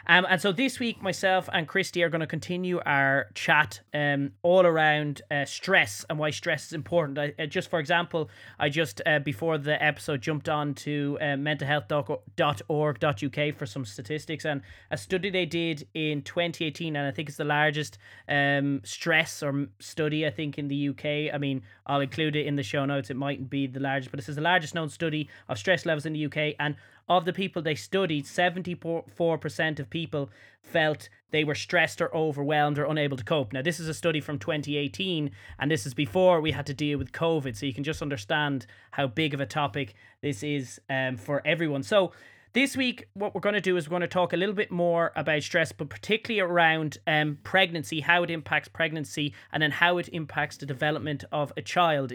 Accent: Irish